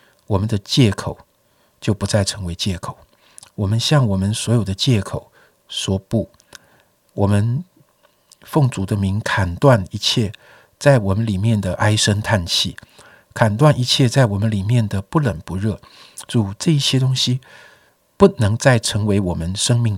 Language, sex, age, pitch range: Chinese, male, 60-79, 105-145 Hz